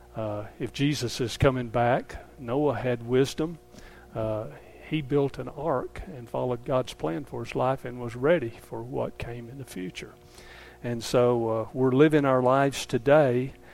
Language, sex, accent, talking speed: English, male, American, 165 wpm